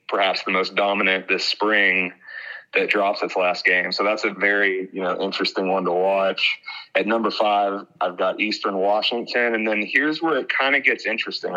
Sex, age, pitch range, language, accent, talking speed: male, 30-49, 95-110 Hz, English, American, 190 wpm